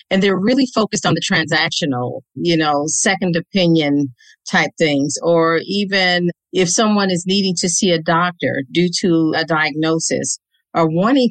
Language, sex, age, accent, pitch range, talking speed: English, female, 50-69, American, 165-195 Hz, 155 wpm